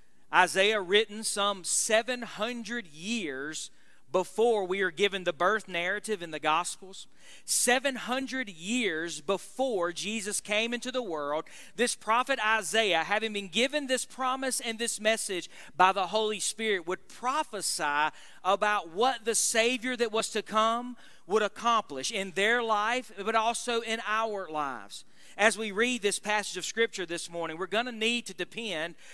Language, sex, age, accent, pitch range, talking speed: English, male, 40-59, American, 180-230 Hz, 150 wpm